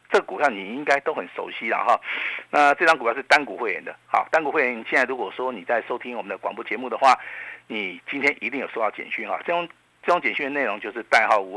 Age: 50-69